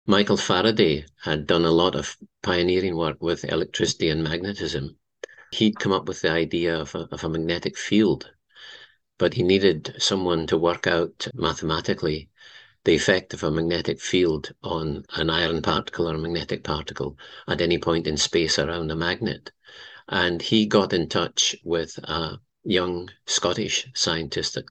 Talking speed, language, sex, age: 160 wpm, English, male, 50-69